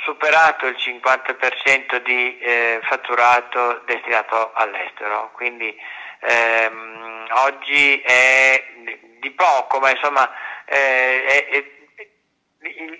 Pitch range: 125-150 Hz